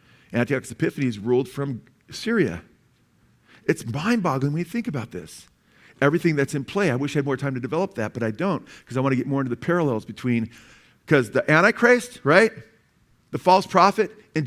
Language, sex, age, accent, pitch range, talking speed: English, male, 50-69, American, 125-170 Hz, 190 wpm